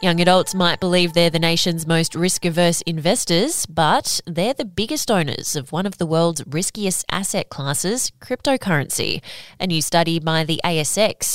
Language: English